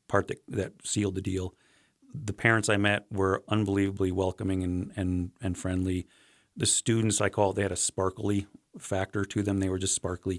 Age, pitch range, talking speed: 40-59, 95-105 Hz, 190 wpm